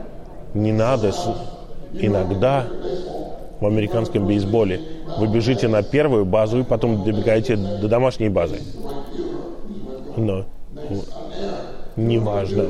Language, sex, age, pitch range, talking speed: Russian, male, 20-39, 110-130 Hz, 90 wpm